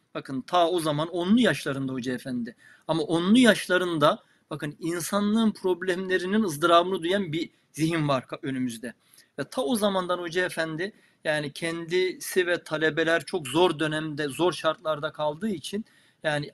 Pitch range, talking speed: 155-195 Hz, 140 wpm